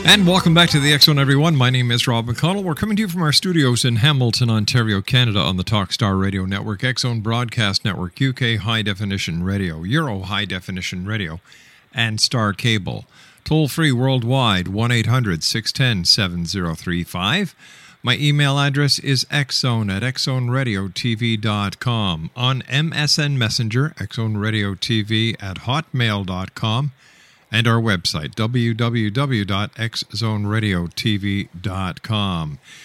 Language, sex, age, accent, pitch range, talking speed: English, male, 50-69, American, 105-140 Hz, 120 wpm